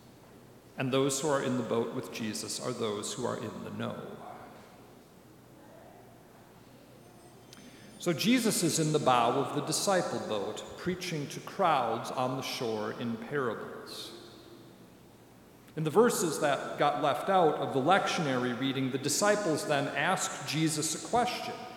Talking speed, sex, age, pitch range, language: 145 wpm, male, 50-69, 135-185 Hz, English